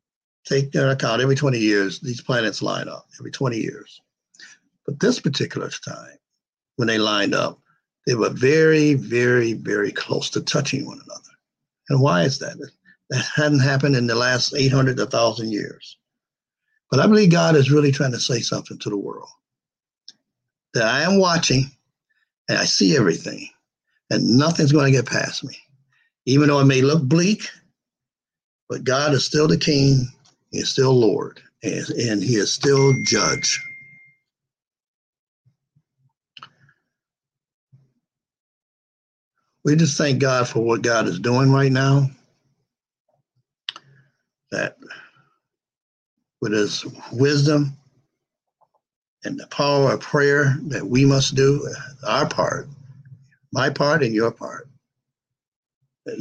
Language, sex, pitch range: English, male, 125-145 Hz